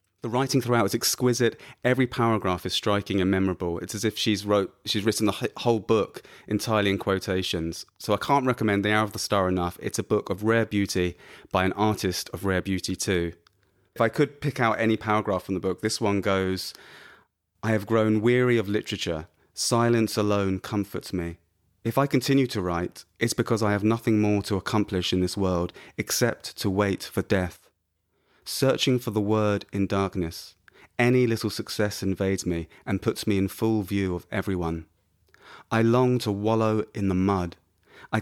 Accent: British